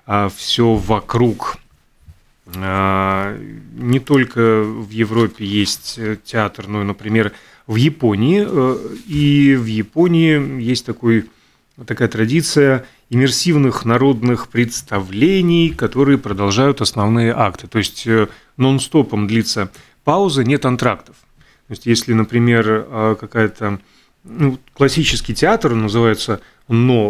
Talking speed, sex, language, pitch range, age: 95 wpm, male, Russian, 110-130 Hz, 30-49